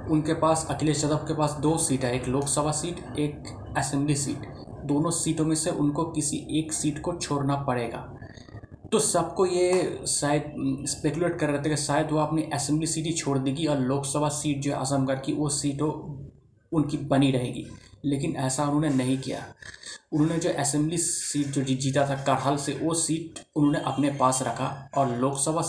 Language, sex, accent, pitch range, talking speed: Hindi, male, native, 135-155 Hz, 180 wpm